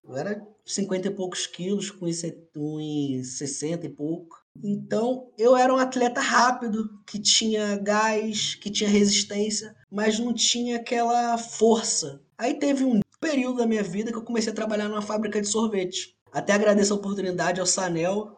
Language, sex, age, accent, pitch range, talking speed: Portuguese, male, 20-39, Brazilian, 185-235 Hz, 175 wpm